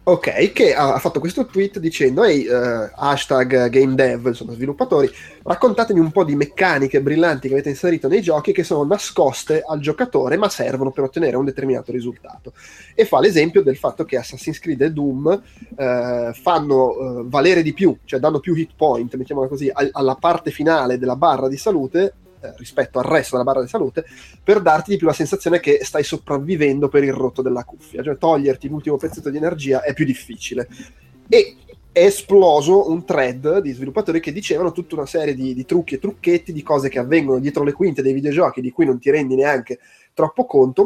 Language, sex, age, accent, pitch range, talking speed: Italian, male, 20-39, native, 130-165 Hz, 185 wpm